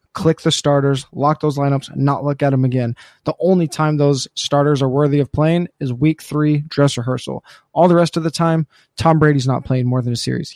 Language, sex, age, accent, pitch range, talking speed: English, male, 20-39, American, 135-160 Hz, 220 wpm